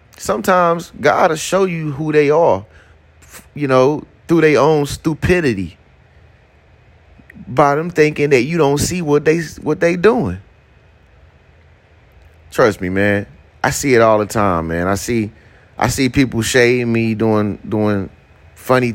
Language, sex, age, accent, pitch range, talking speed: English, male, 30-49, American, 95-140 Hz, 145 wpm